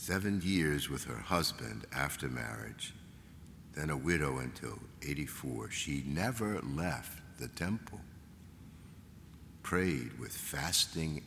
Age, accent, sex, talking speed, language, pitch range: 60-79, American, male, 105 wpm, English, 75-95 Hz